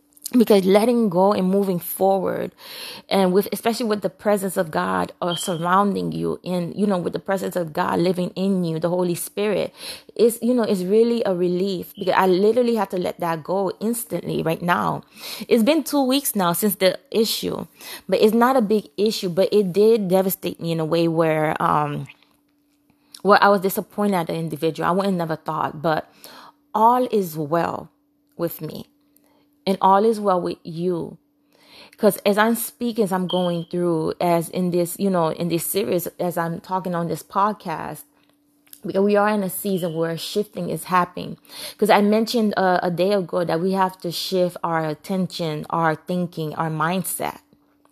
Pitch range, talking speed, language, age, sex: 175-215 Hz, 180 wpm, English, 20-39, female